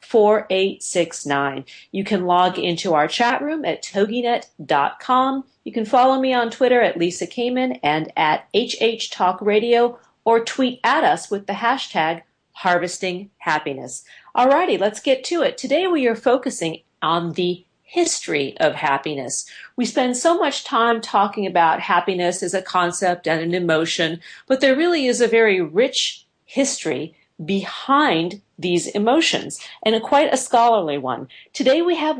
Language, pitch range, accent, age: English, 175-245 Hz, American, 40-59